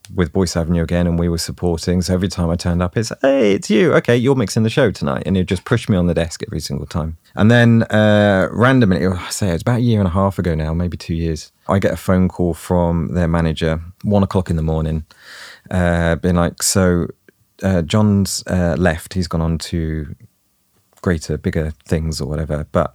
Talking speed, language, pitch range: 225 wpm, English, 85-100 Hz